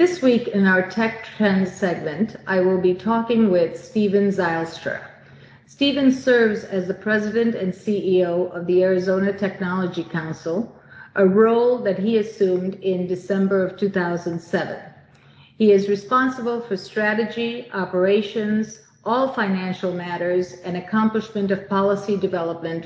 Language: English